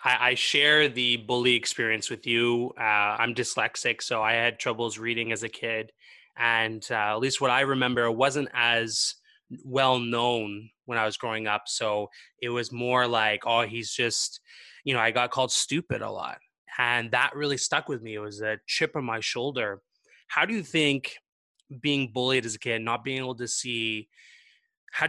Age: 20-39